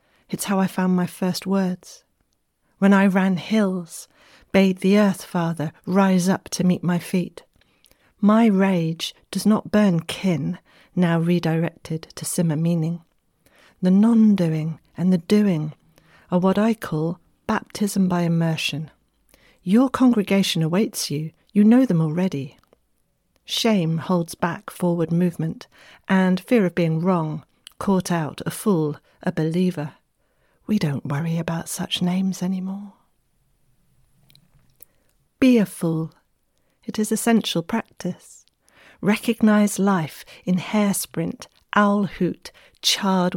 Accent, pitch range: British, 170-205 Hz